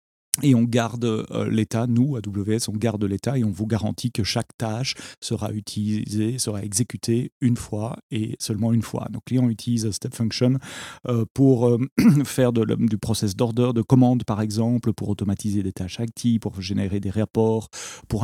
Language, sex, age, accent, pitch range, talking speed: French, male, 40-59, French, 110-125 Hz, 170 wpm